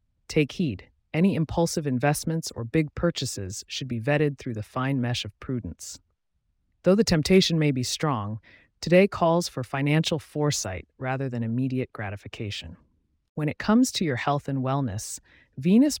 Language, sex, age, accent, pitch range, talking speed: English, female, 30-49, American, 115-160 Hz, 155 wpm